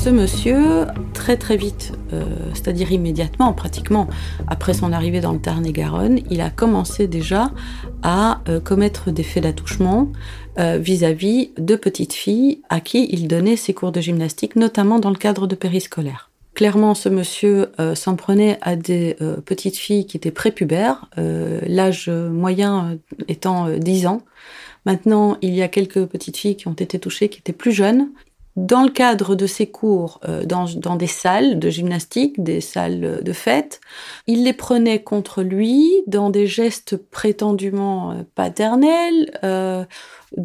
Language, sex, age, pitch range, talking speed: French, female, 30-49, 175-215 Hz, 160 wpm